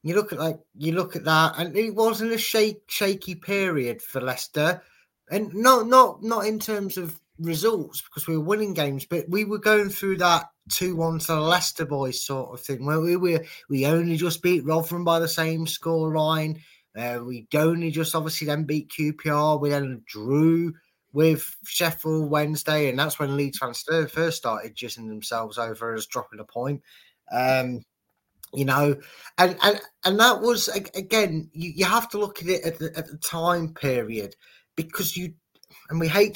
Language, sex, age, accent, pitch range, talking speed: English, male, 20-39, British, 145-180 Hz, 185 wpm